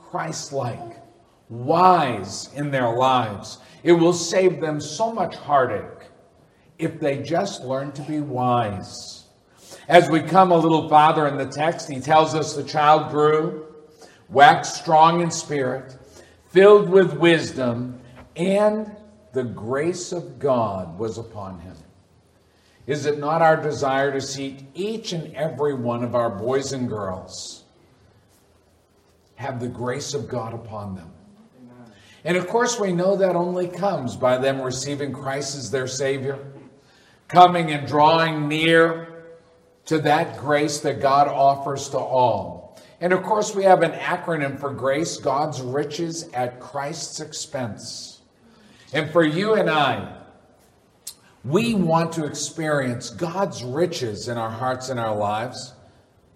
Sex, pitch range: male, 125-165 Hz